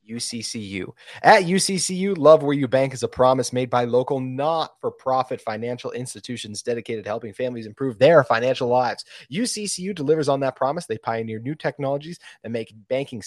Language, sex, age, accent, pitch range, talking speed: English, male, 30-49, American, 110-145 Hz, 170 wpm